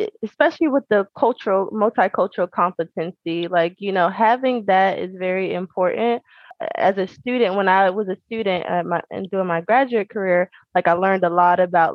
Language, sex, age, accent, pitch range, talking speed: English, female, 20-39, American, 170-210 Hz, 165 wpm